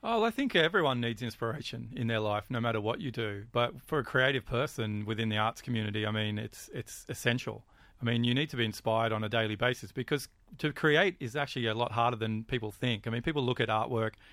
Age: 30-49